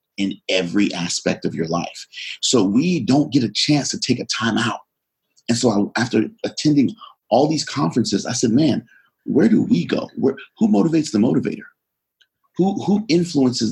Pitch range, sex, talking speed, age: 105-160 Hz, male, 165 wpm, 40-59